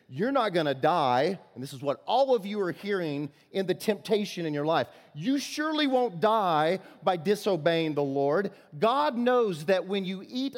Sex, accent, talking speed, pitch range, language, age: male, American, 195 wpm, 165-220 Hz, English, 30-49